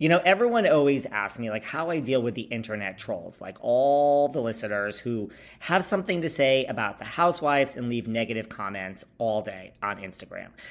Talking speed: 190 wpm